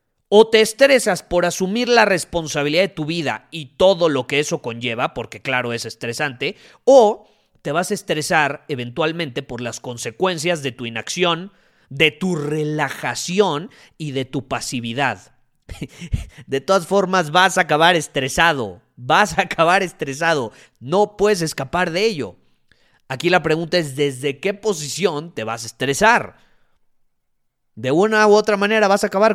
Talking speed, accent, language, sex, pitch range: 150 wpm, Mexican, Spanish, male, 130-180 Hz